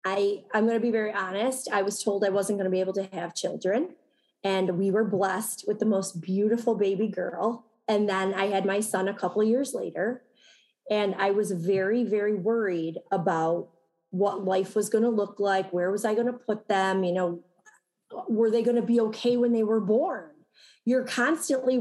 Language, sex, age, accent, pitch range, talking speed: English, female, 30-49, American, 195-245 Hz, 205 wpm